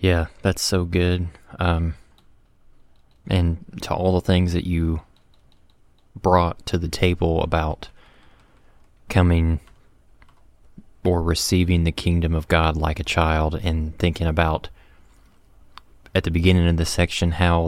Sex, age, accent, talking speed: male, 20-39, American, 125 wpm